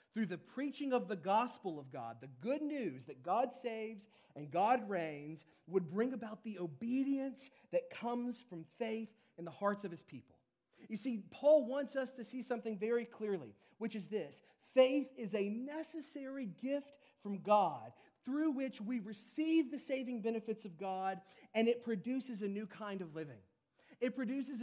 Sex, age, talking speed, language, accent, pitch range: male, 40-59, 175 wpm, English, American, 180-240 Hz